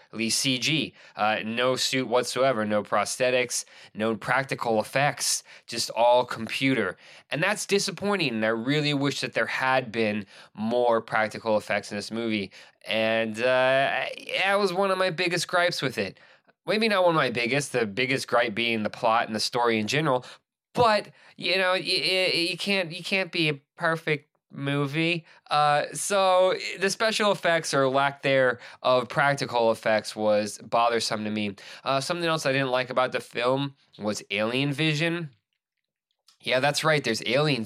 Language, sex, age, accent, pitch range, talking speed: English, male, 20-39, American, 115-155 Hz, 160 wpm